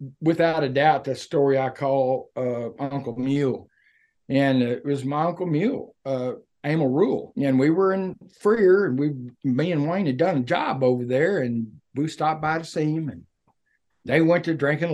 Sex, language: male, English